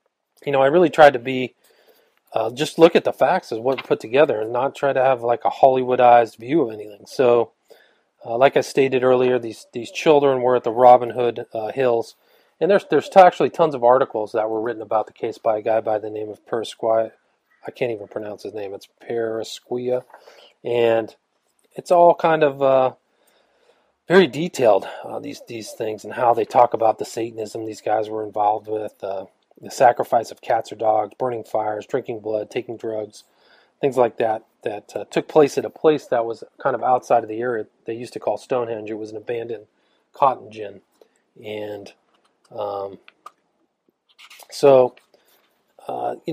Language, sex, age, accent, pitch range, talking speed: English, male, 40-59, American, 110-140 Hz, 190 wpm